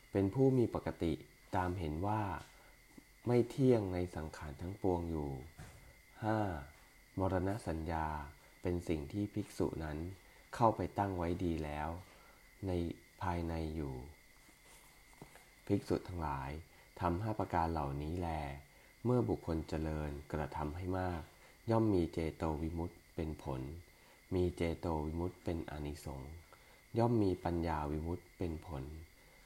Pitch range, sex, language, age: 80-105 Hz, male, English, 20-39